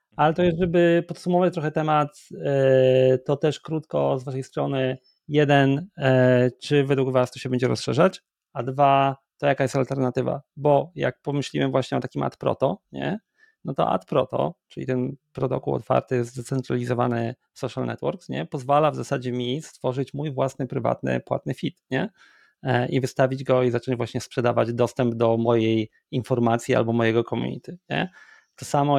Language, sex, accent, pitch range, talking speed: Polish, male, native, 125-140 Hz, 155 wpm